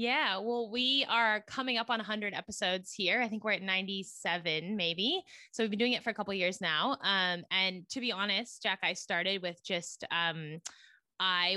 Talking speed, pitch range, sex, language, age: 210 wpm, 170-215 Hz, female, English, 20-39